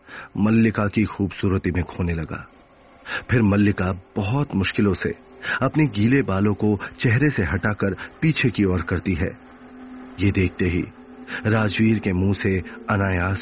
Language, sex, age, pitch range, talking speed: Hindi, male, 30-49, 95-120 Hz, 135 wpm